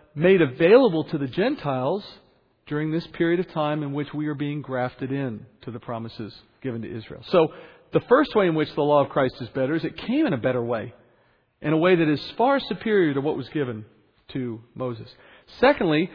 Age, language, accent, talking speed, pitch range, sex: 40-59, English, American, 210 wpm, 140-190 Hz, male